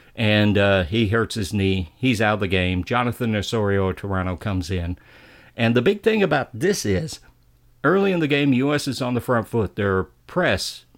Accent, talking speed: American, 195 wpm